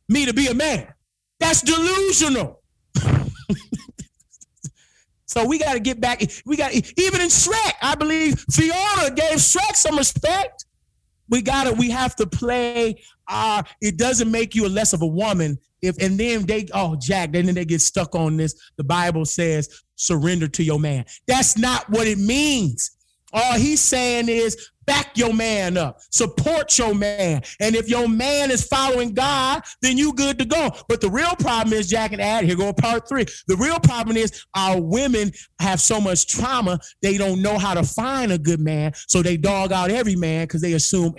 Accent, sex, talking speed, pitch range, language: American, male, 190 wpm, 165-245 Hz, English